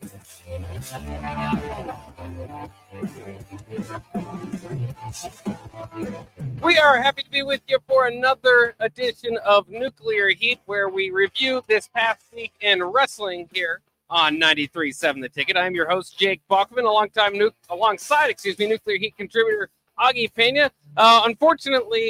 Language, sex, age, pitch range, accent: English, male, 40-59, 140-200 Hz, American